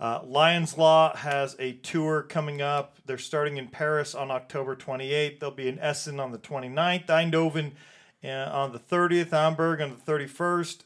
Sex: male